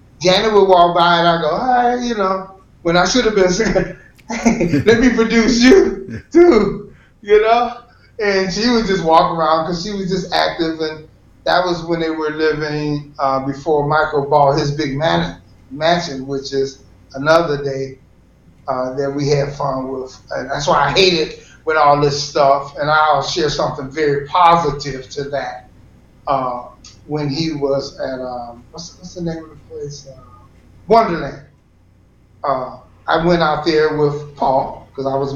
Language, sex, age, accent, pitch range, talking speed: English, male, 30-49, American, 140-175 Hz, 175 wpm